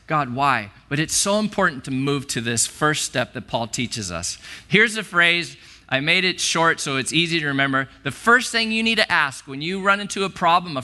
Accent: American